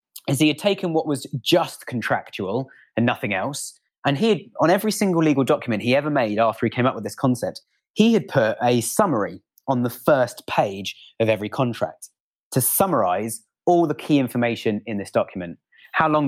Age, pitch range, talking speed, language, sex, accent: 20-39, 110-140 Hz, 190 wpm, English, male, British